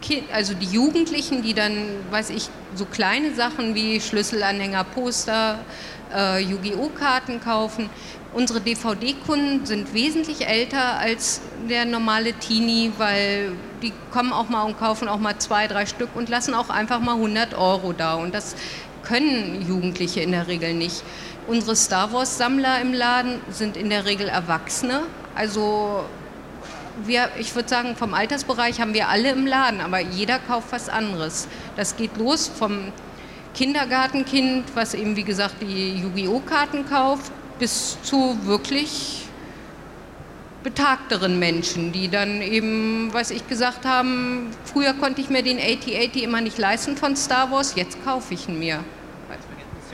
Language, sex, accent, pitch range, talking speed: German, female, German, 205-255 Hz, 150 wpm